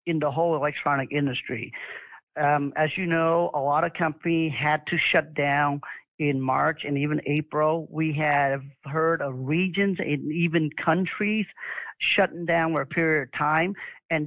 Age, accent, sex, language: 50-69, American, male, English